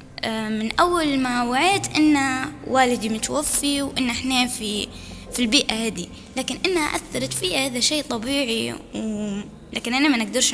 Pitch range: 220-275 Hz